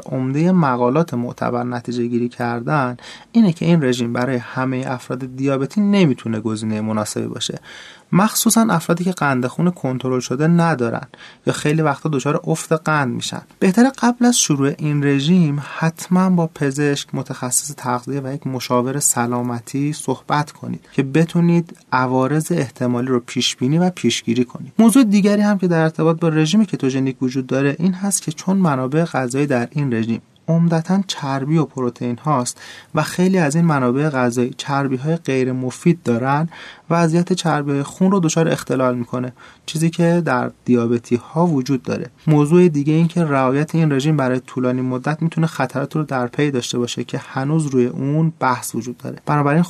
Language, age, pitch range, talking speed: Persian, 30-49, 125-170 Hz, 160 wpm